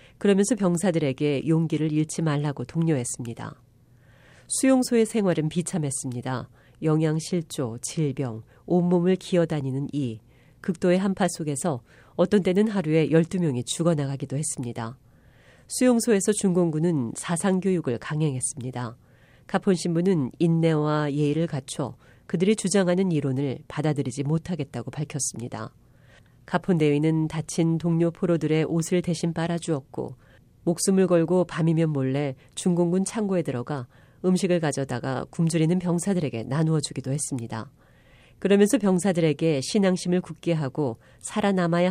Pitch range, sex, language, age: 130-175 Hz, female, Korean, 40-59